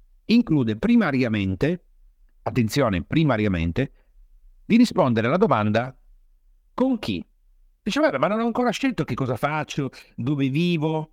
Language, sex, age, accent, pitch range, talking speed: Italian, male, 50-69, native, 120-185 Hz, 115 wpm